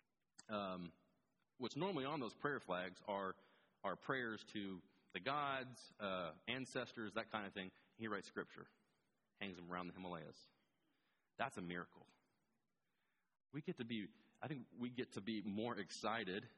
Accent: American